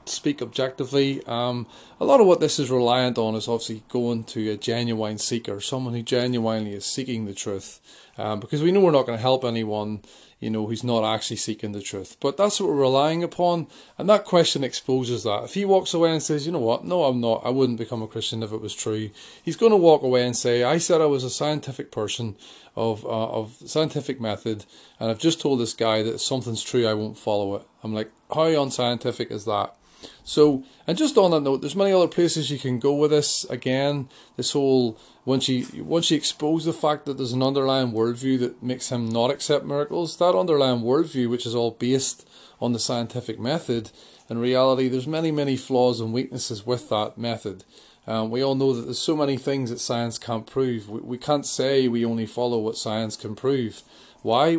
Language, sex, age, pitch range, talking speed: English, male, 30-49, 115-145 Hz, 215 wpm